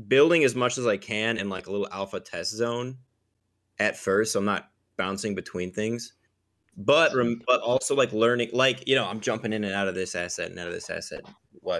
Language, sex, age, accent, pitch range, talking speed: English, male, 20-39, American, 95-115 Hz, 225 wpm